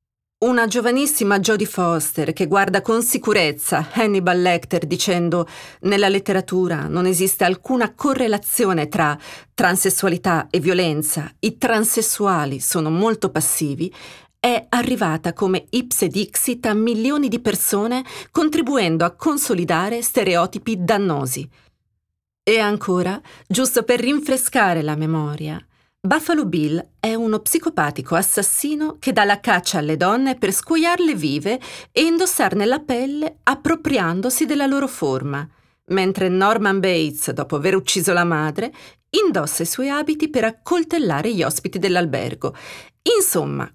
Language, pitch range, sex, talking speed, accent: Italian, 165-245 Hz, female, 120 wpm, native